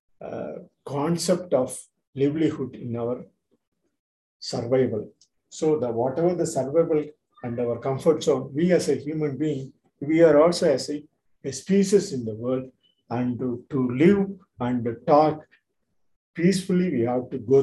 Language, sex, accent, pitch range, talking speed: Tamil, male, native, 125-165 Hz, 145 wpm